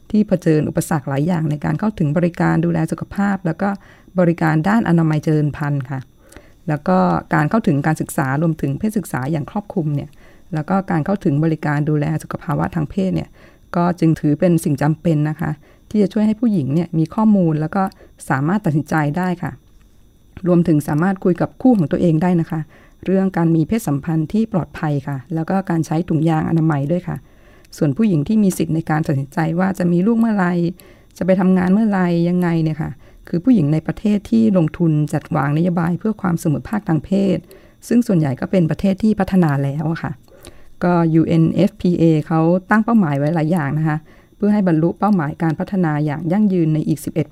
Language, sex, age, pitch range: Thai, female, 20-39, 155-185 Hz